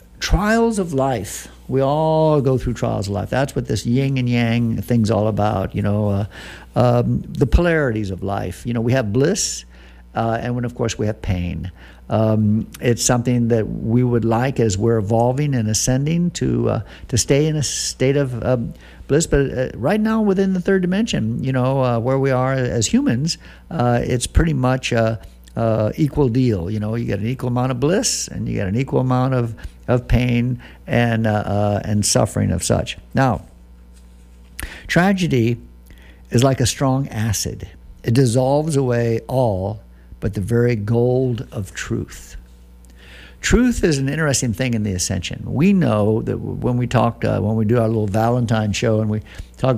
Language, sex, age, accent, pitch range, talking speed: English, male, 60-79, American, 100-130 Hz, 185 wpm